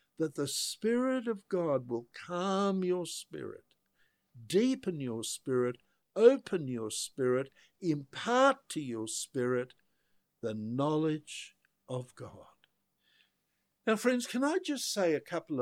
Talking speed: 120 wpm